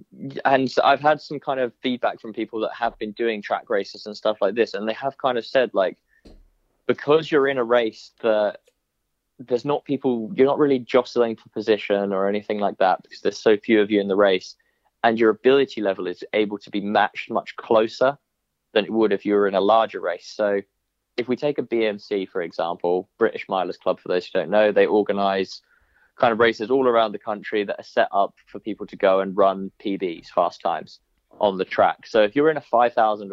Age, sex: 20-39, male